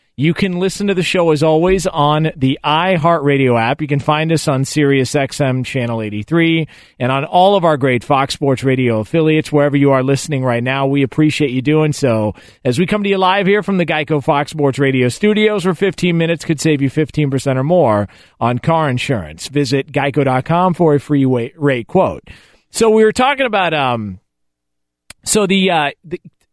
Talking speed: 190 wpm